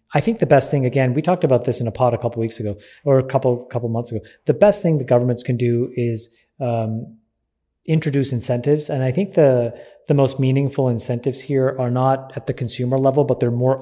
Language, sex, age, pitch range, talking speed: English, male, 30-49, 125-145 Hz, 225 wpm